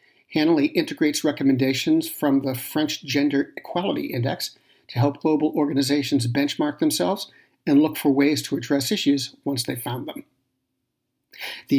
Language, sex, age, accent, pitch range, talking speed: English, male, 50-69, American, 135-165 Hz, 135 wpm